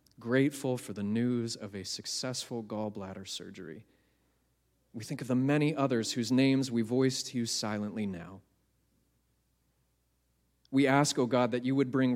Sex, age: male, 30-49